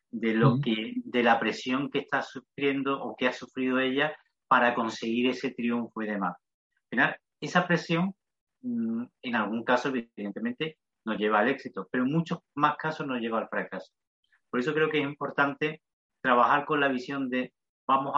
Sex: male